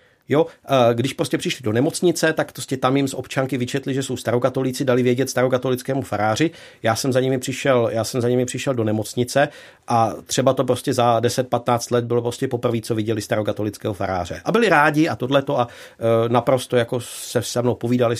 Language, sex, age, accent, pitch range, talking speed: Czech, male, 50-69, native, 115-135 Hz, 190 wpm